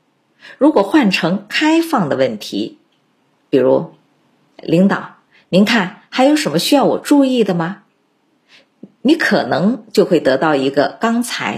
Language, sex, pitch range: Chinese, female, 175-265 Hz